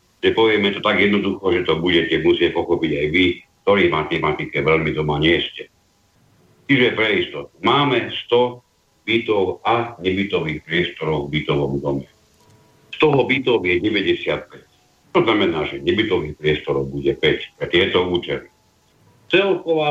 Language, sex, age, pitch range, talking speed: Slovak, male, 60-79, 80-120 Hz, 140 wpm